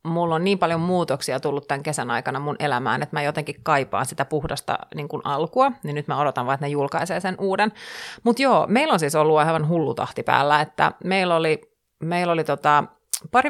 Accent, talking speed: native, 205 wpm